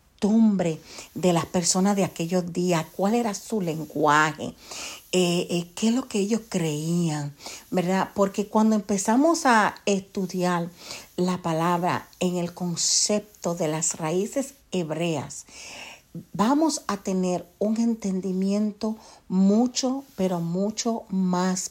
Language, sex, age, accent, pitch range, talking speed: Spanish, female, 50-69, American, 175-220 Hz, 115 wpm